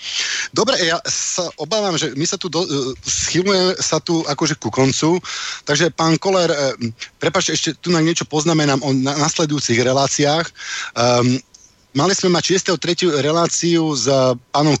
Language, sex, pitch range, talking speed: Slovak, male, 130-160 Hz, 135 wpm